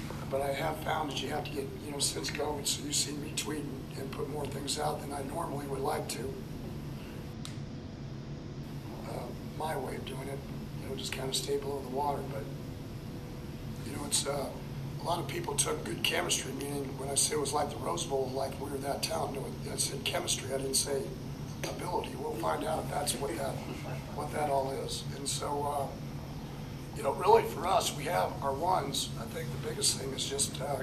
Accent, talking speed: American, 215 wpm